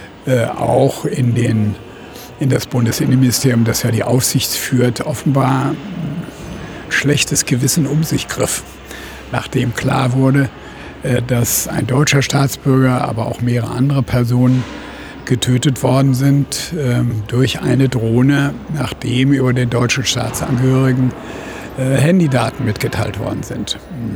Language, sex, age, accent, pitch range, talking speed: German, male, 60-79, German, 115-135 Hz, 110 wpm